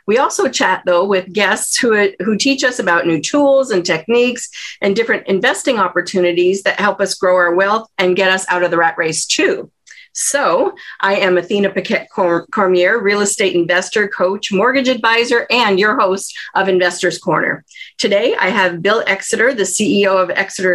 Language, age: English, 40-59